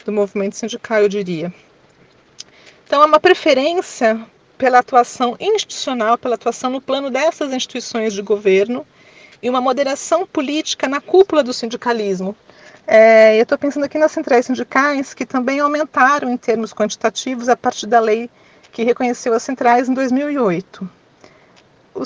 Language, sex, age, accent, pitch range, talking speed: Portuguese, female, 40-59, Brazilian, 215-275 Hz, 135 wpm